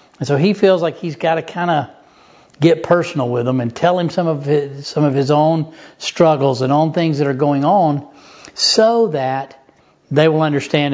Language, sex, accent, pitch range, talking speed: English, male, American, 135-160 Hz, 205 wpm